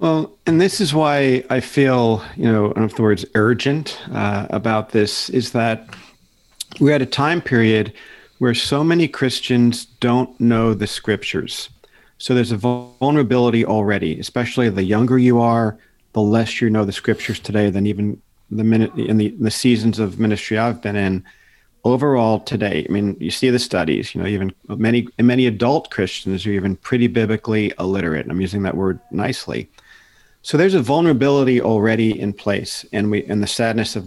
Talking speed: 180 wpm